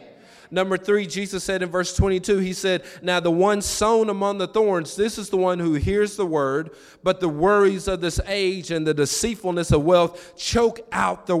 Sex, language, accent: male, English, American